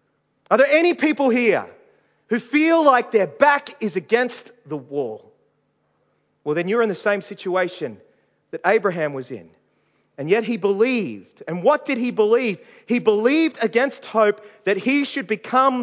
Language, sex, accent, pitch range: English, male, Australian, 195-250 Hz